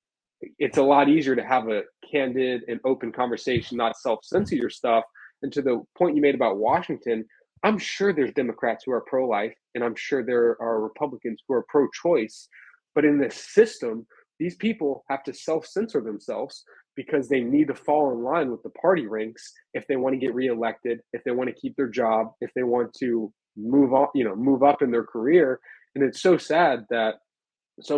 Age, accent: 20-39, American